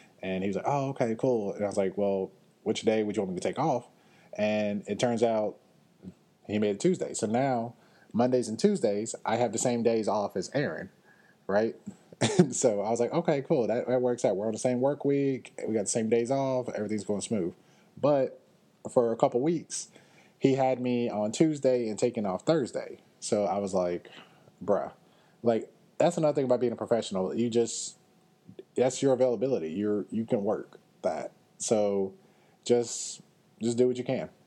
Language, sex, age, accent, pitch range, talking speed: English, male, 20-39, American, 105-130 Hz, 195 wpm